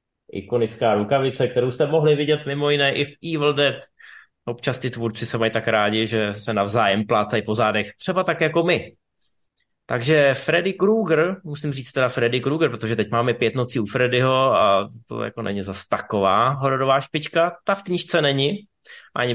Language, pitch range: Czech, 115-140 Hz